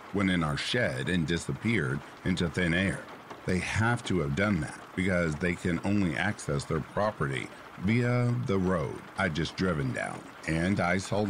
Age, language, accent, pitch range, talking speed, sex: 50-69, English, American, 80-105 Hz, 170 wpm, male